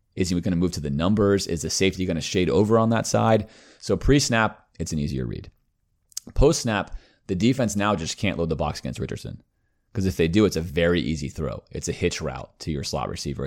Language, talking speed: English, 230 wpm